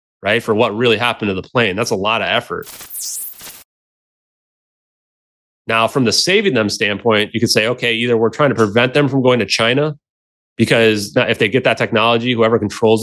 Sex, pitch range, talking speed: male, 100-120 Hz, 190 wpm